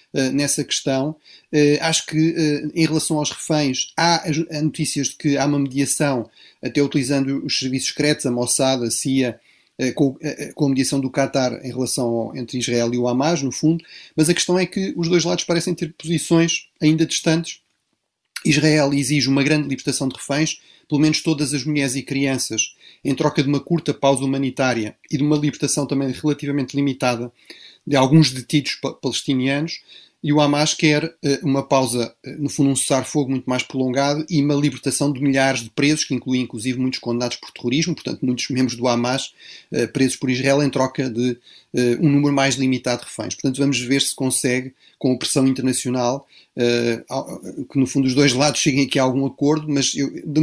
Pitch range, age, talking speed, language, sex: 130-150 Hz, 30-49, 180 wpm, Portuguese, male